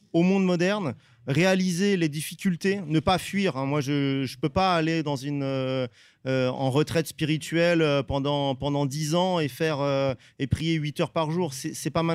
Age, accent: 30-49, French